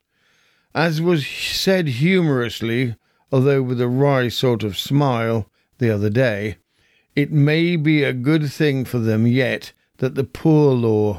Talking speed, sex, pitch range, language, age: 145 wpm, male, 120-145 Hz, English, 50-69